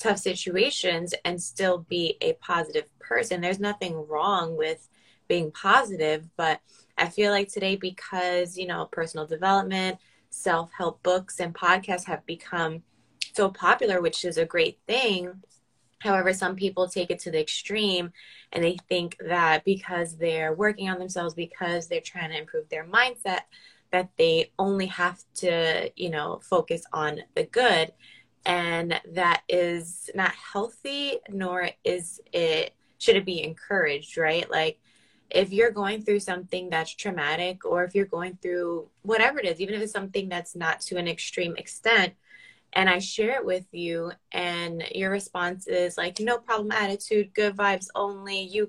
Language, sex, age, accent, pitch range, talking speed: English, female, 20-39, American, 170-200 Hz, 160 wpm